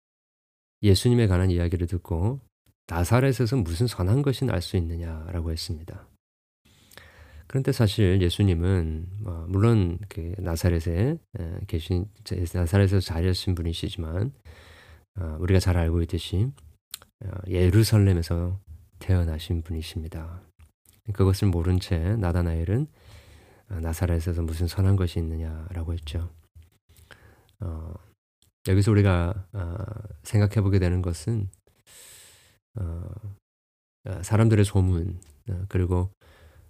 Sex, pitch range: male, 85-105 Hz